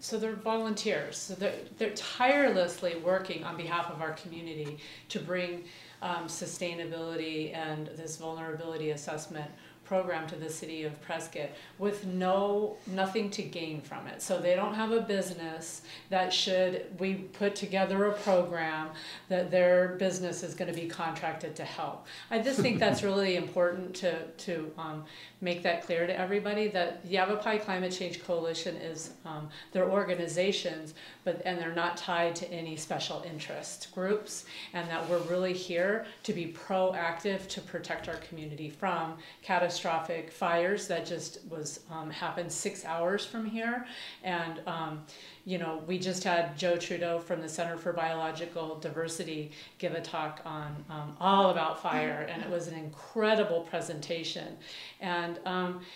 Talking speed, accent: 155 wpm, American